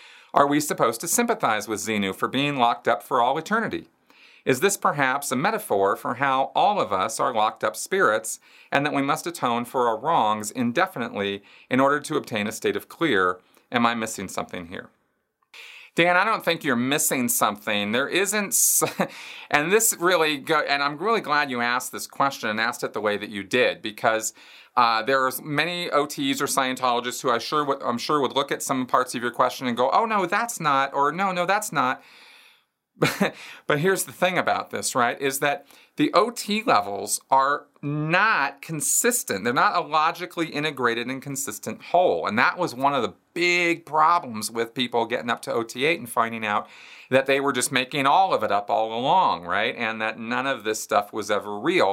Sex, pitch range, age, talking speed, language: male, 120-175 Hz, 40-59, 195 wpm, English